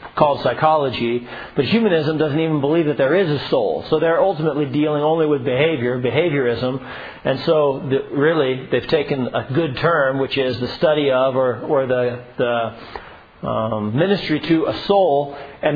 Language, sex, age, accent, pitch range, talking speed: English, male, 40-59, American, 130-160 Hz, 175 wpm